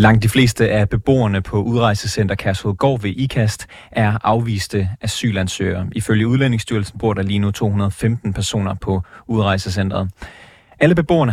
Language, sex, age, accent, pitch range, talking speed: Danish, male, 30-49, native, 100-125 Hz, 130 wpm